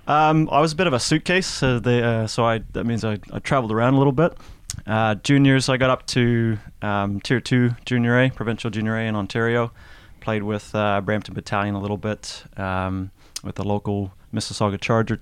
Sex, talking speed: male, 205 wpm